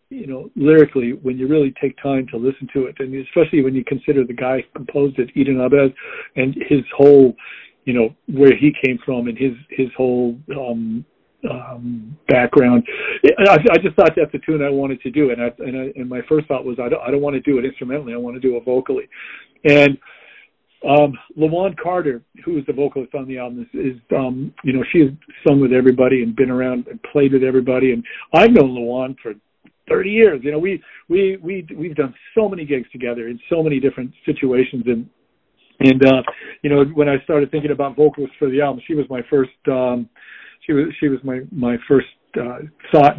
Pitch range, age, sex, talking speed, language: 130-150 Hz, 50-69, male, 215 wpm, English